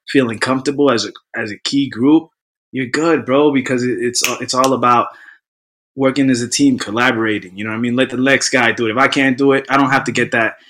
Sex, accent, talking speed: male, American, 240 wpm